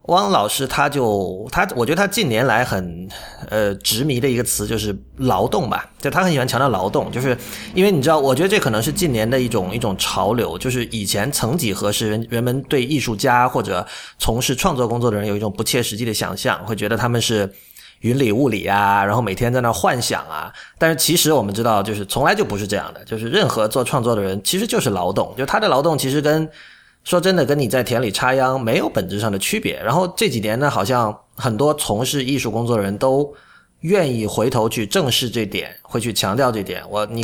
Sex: male